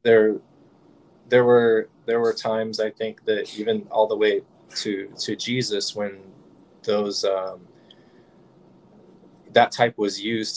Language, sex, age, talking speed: English, male, 20-39, 130 wpm